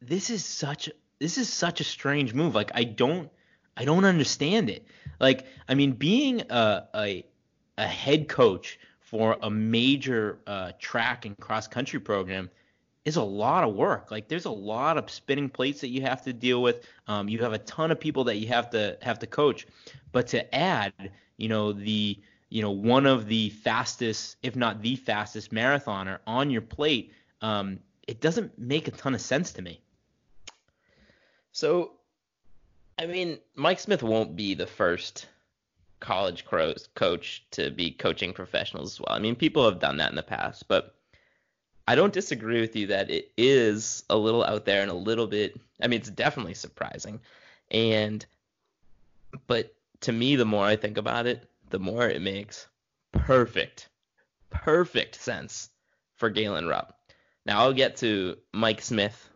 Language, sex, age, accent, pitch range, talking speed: English, male, 20-39, American, 105-145 Hz, 170 wpm